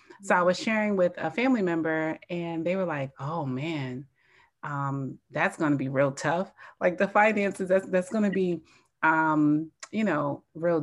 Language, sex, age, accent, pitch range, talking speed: English, female, 30-49, American, 155-195 Hz, 185 wpm